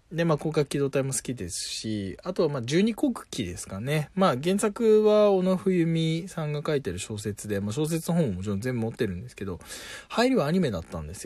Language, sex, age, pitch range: Japanese, male, 20-39, 100-165 Hz